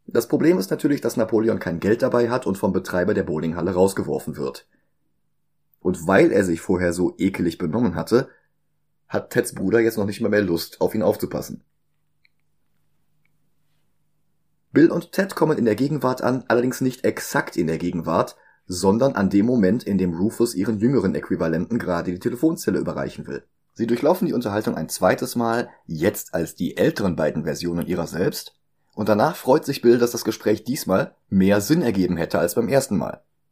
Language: German